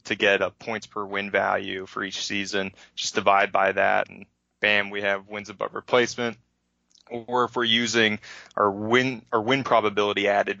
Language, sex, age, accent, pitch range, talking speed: English, male, 20-39, American, 100-115 Hz, 175 wpm